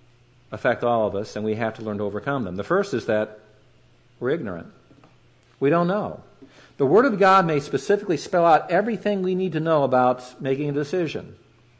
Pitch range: 120-145 Hz